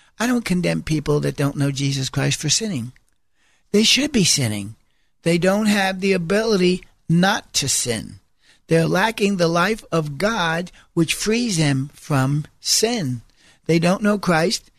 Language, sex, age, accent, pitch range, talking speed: English, male, 60-79, American, 160-195 Hz, 155 wpm